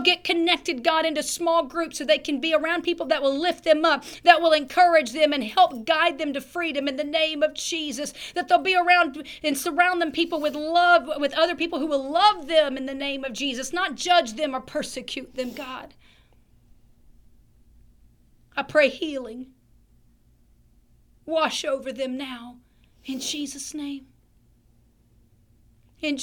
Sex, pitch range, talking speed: female, 250-320 Hz, 165 wpm